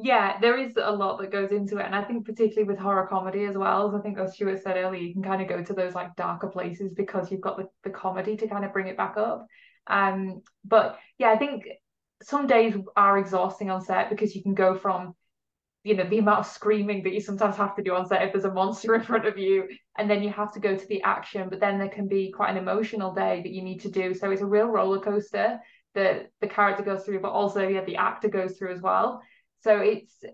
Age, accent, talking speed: 20-39, British, 260 wpm